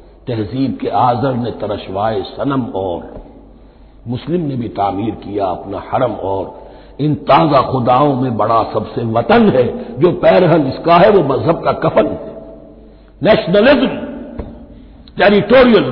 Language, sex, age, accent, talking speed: Hindi, male, 60-79, native, 125 wpm